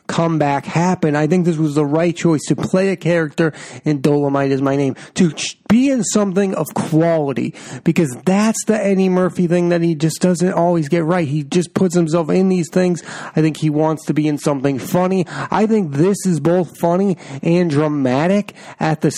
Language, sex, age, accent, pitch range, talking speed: English, male, 30-49, American, 145-180 Hz, 195 wpm